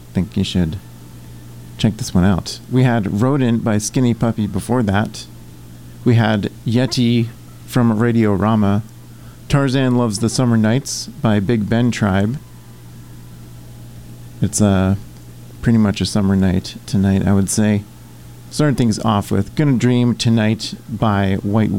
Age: 40-59